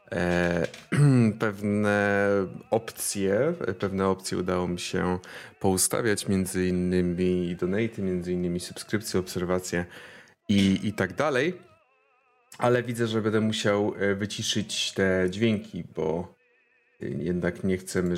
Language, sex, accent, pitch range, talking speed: Polish, male, native, 95-125 Hz, 95 wpm